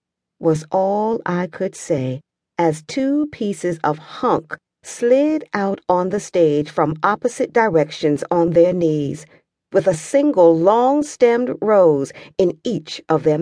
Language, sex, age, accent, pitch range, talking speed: English, female, 40-59, American, 155-205 Hz, 135 wpm